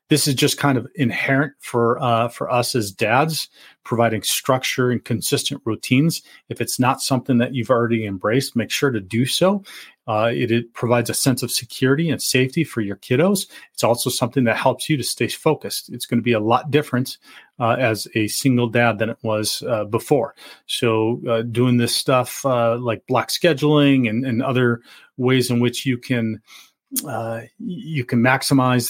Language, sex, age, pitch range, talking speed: English, male, 40-59, 115-140 Hz, 185 wpm